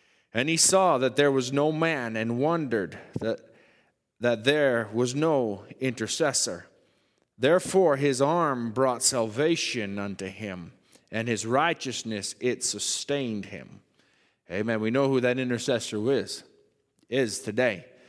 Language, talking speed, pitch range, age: English, 125 wpm, 115-155 Hz, 30-49